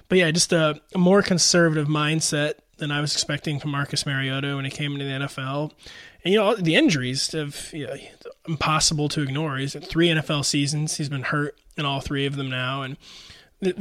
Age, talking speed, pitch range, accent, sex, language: 20-39, 210 wpm, 140-165 Hz, American, male, English